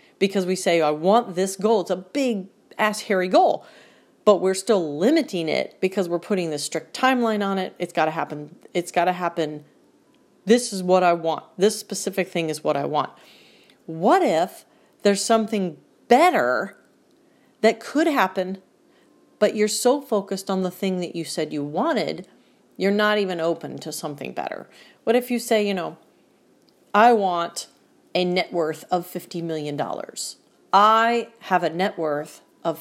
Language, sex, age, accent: English, female, 40-59, American